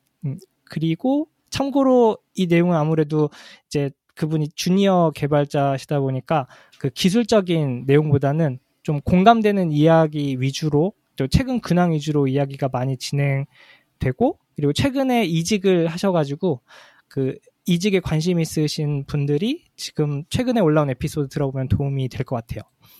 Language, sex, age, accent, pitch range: Korean, male, 20-39, native, 140-205 Hz